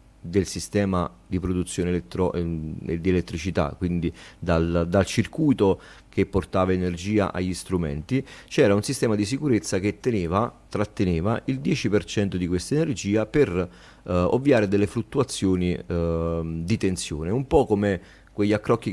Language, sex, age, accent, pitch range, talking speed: Italian, male, 30-49, native, 85-105 Hz, 125 wpm